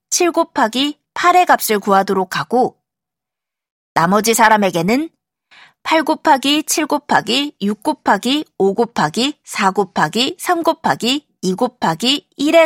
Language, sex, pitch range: Korean, female, 200-290 Hz